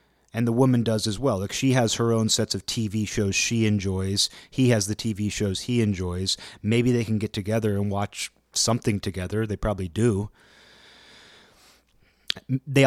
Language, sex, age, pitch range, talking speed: English, male, 30-49, 100-125 Hz, 175 wpm